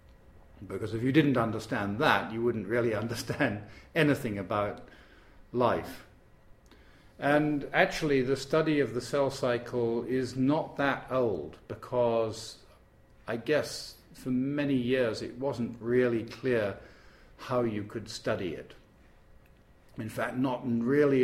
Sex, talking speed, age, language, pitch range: male, 125 wpm, 50-69, Hungarian, 105-130 Hz